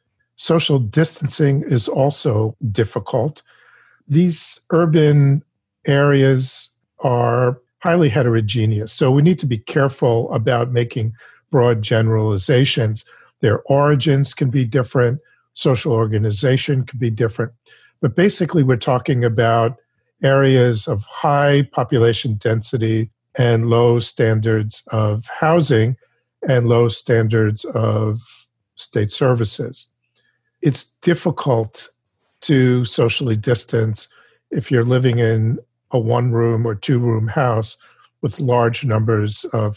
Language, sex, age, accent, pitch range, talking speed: English, male, 50-69, American, 115-140 Hz, 105 wpm